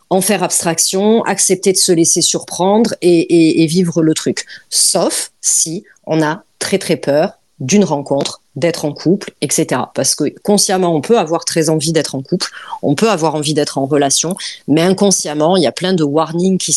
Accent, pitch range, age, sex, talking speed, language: French, 155-200 Hz, 30-49, female, 195 wpm, French